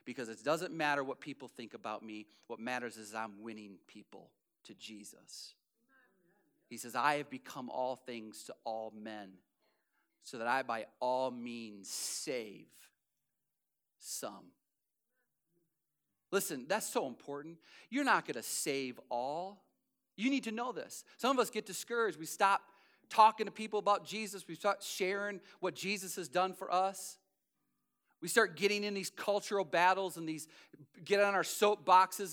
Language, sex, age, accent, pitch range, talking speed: English, male, 40-59, American, 155-230 Hz, 155 wpm